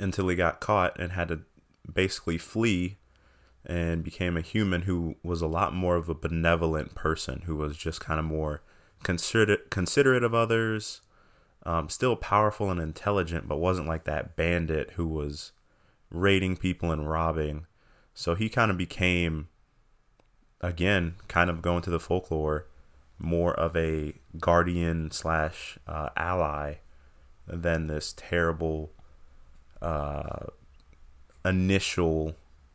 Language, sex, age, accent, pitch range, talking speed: English, male, 20-39, American, 75-90 Hz, 130 wpm